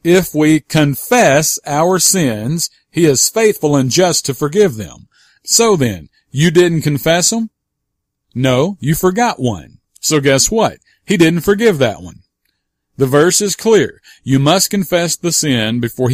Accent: American